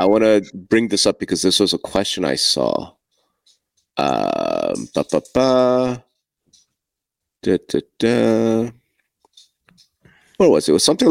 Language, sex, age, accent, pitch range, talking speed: English, male, 30-49, American, 95-130 Hz, 130 wpm